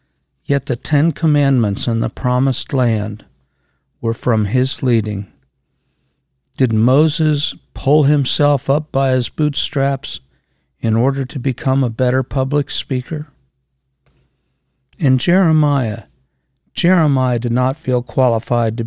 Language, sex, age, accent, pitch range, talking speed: English, male, 60-79, American, 115-140 Hz, 115 wpm